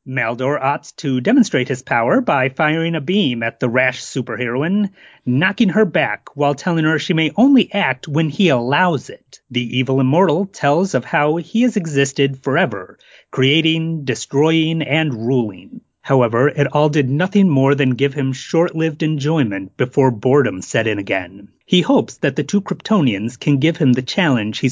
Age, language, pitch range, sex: 30-49, English, 130-170 Hz, male